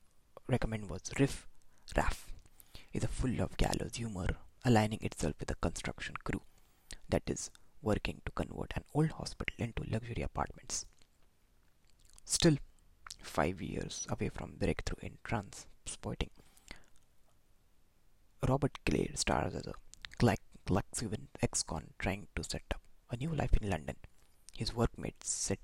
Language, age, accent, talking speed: English, 20-39, Indian, 125 wpm